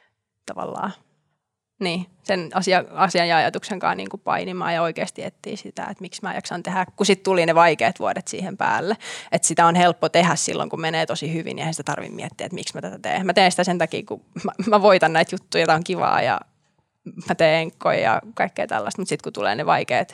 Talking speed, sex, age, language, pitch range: 220 wpm, female, 20-39, Finnish, 170-200 Hz